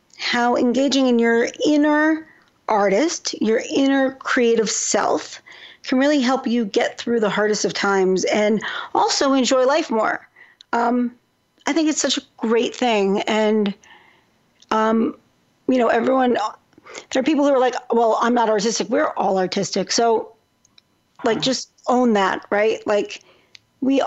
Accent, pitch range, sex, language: American, 210-265 Hz, female, English